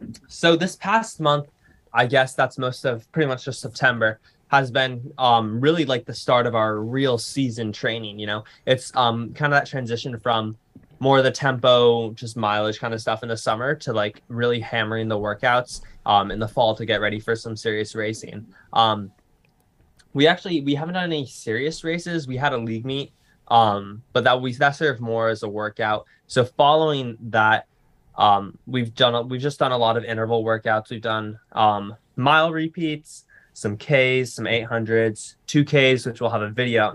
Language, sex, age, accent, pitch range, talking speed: English, male, 10-29, American, 110-140 Hz, 195 wpm